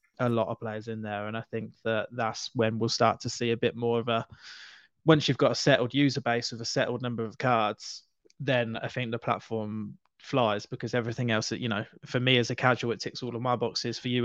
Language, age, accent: English, 20-39, British